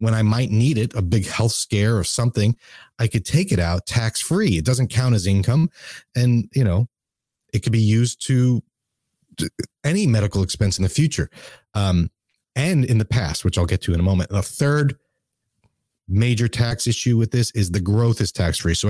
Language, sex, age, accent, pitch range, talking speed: English, male, 30-49, American, 100-125 Hz, 195 wpm